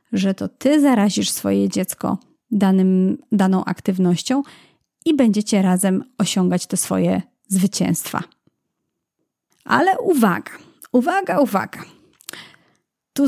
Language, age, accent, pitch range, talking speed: Polish, 30-49, native, 200-255 Hz, 90 wpm